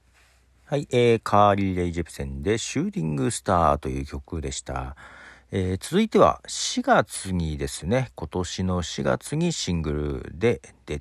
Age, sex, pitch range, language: 50-69, male, 70-100 Hz, Japanese